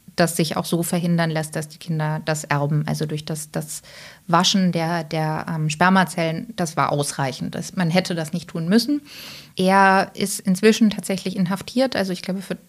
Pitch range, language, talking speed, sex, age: 175-205 Hz, English, 180 wpm, female, 30-49